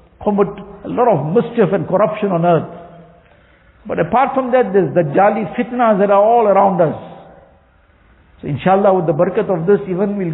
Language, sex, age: English, male, 60-79